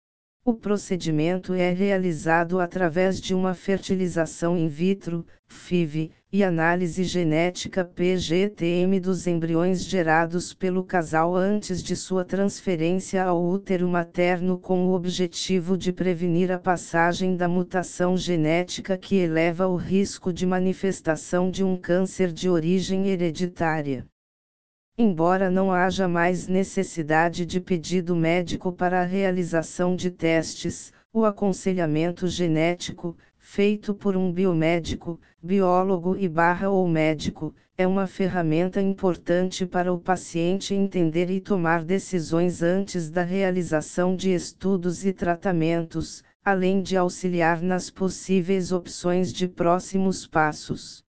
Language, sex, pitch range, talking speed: Portuguese, female, 170-190 Hz, 120 wpm